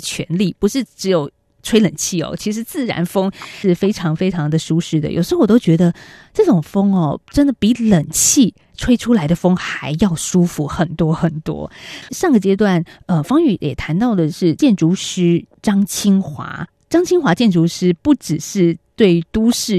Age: 20-39